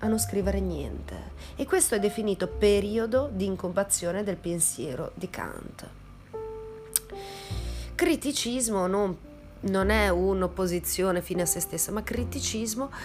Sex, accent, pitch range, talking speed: female, native, 160-230 Hz, 120 wpm